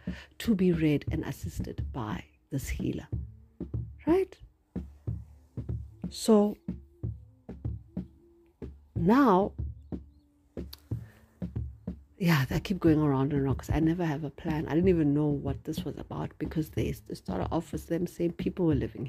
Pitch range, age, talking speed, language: 115-175 Hz, 60-79, 130 wpm, English